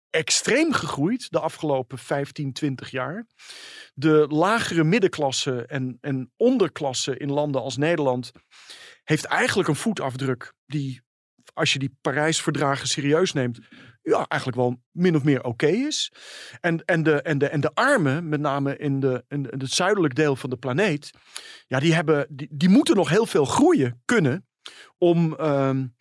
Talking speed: 165 wpm